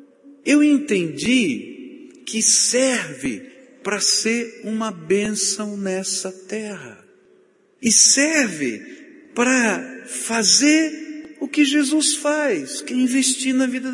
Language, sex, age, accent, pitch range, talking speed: Portuguese, male, 50-69, Brazilian, 175-285 Hz, 100 wpm